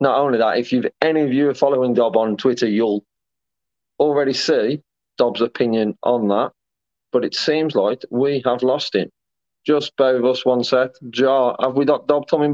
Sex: male